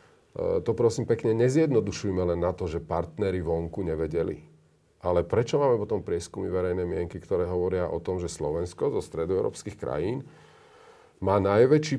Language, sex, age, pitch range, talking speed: Slovak, male, 40-59, 90-125 Hz, 145 wpm